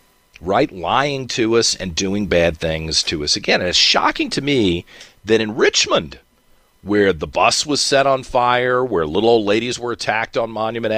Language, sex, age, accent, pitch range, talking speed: English, male, 40-59, American, 100-130 Hz, 180 wpm